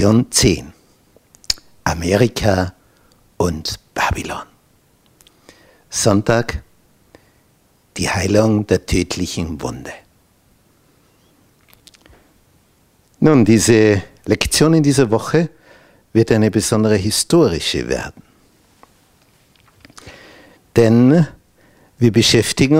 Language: German